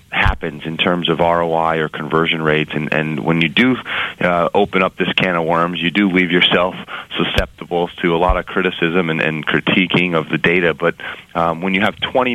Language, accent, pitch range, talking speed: English, American, 75-90 Hz, 205 wpm